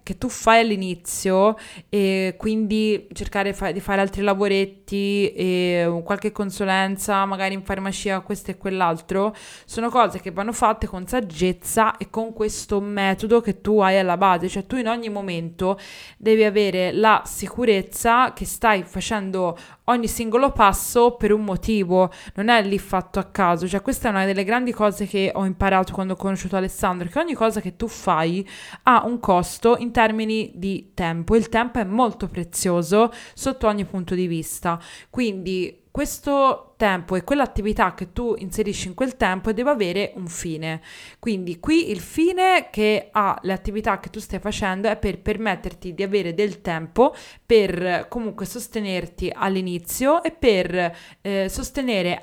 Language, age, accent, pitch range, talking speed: Italian, 20-39, native, 190-230 Hz, 160 wpm